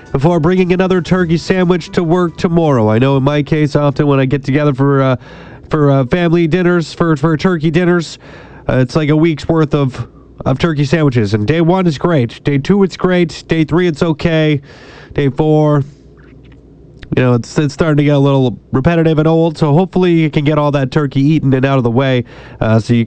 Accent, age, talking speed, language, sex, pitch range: American, 30-49, 215 wpm, English, male, 130-170 Hz